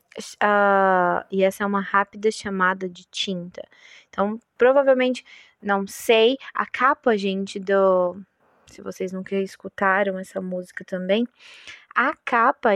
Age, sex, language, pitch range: 20-39, female, Portuguese, 200-245 Hz